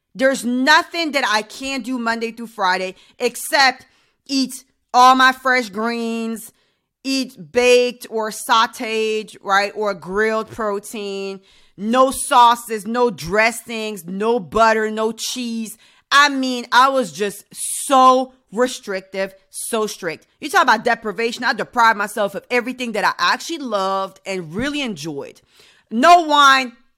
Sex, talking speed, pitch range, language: female, 130 wpm, 205-260 Hz, English